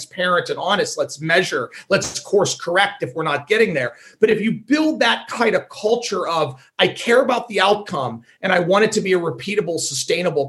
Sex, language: male, English